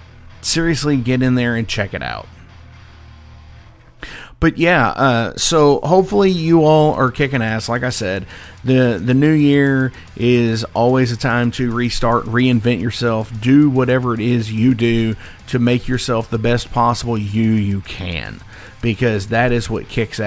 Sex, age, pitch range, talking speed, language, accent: male, 40-59, 110-135 Hz, 155 wpm, English, American